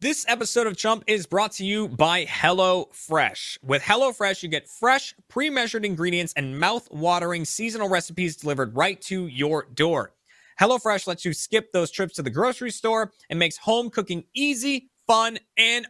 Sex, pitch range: male, 155-215 Hz